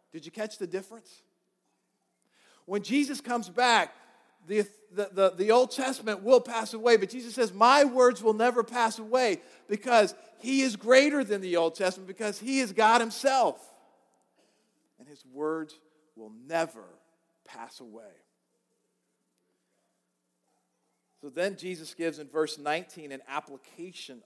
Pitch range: 155-220 Hz